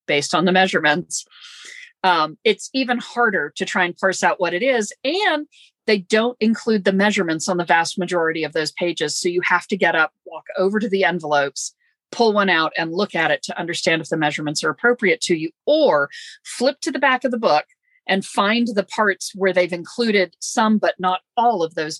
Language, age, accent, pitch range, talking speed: English, 40-59, American, 170-240 Hz, 210 wpm